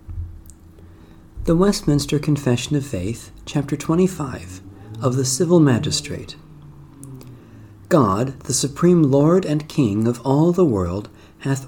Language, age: English, 50-69